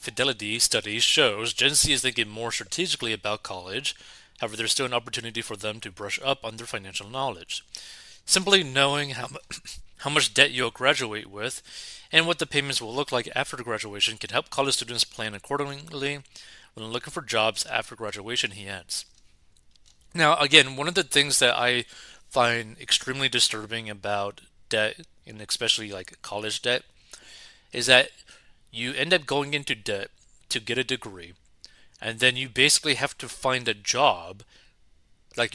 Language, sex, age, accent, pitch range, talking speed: English, male, 30-49, American, 110-135 Hz, 160 wpm